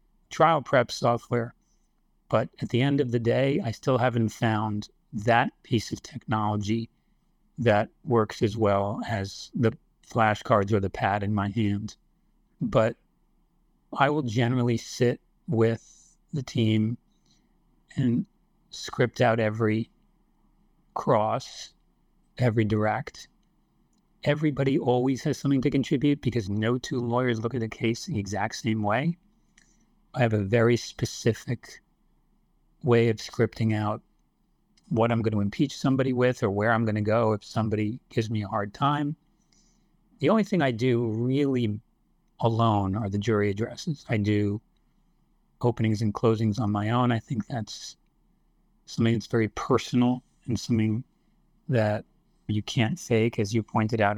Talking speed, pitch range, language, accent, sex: 145 wpm, 110-130 Hz, English, American, male